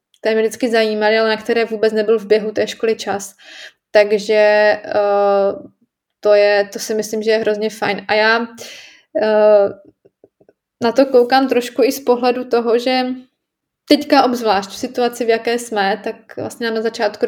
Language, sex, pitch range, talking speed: Slovak, female, 215-245 Hz, 175 wpm